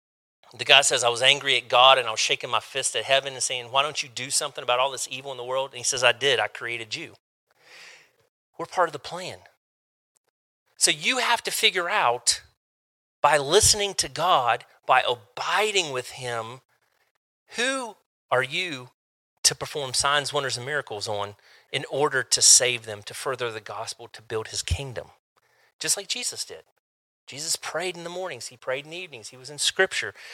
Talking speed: 195 wpm